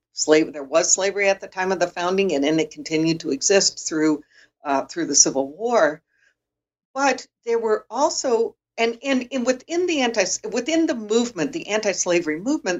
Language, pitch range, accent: English, 165-255 Hz, American